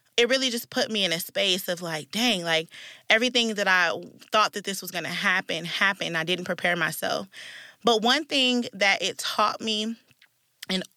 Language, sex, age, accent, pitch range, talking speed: English, female, 20-39, American, 180-235 Hz, 190 wpm